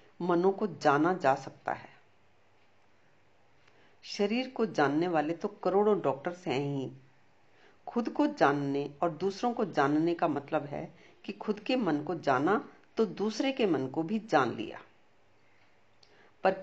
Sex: female